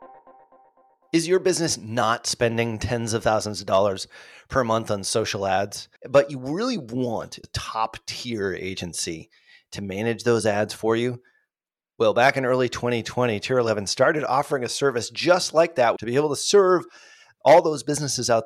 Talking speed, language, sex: 170 wpm, English, male